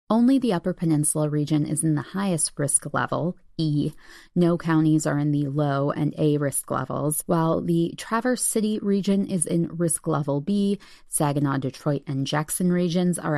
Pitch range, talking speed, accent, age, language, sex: 150-190 Hz, 165 wpm, American, 20-39, English, female